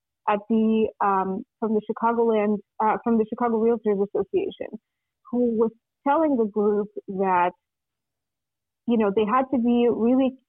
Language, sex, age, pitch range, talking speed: English, female, 30-49, 200-235 Hz, 145 wpm